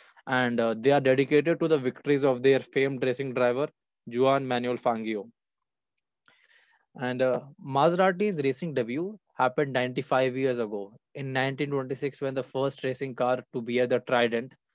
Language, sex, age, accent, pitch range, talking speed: English, male, 20-39, Indian, 125-140 Hz, 150 wpm